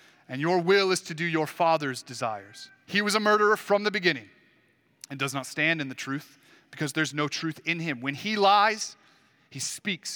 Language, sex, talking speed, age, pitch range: English, male, 200 wpm, 30-49, 140-195 Hz